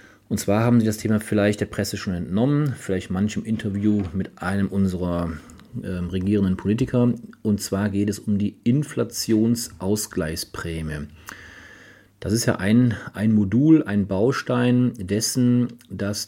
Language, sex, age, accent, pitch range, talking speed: German, male, 40-59, German, 95-115 Hz, 135 wpm